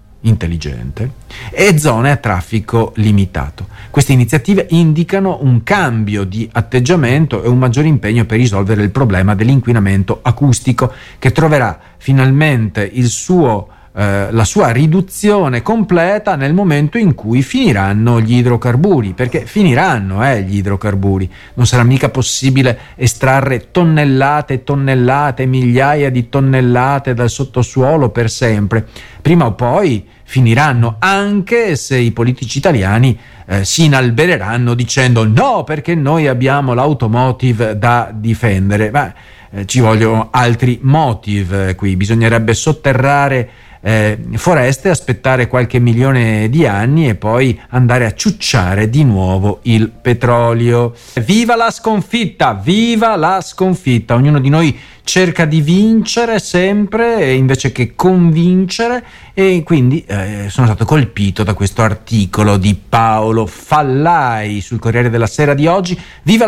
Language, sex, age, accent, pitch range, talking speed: Italian, male, 40-59, native, 110-155 Hz, 125 wpm